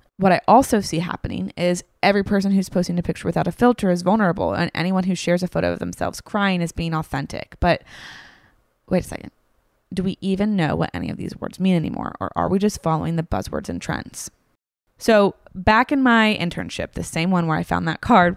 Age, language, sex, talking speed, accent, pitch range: 20-39, English, female, 215 wpm, American, 165-200 Hz